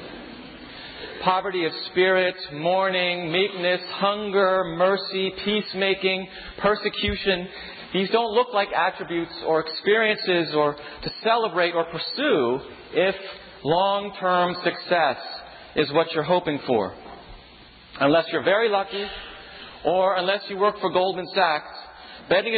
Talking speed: 110 wpm